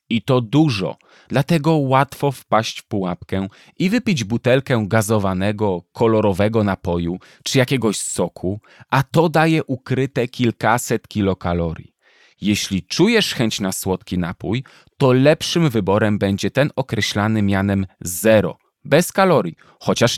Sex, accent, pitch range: male, native, 95-135 Hz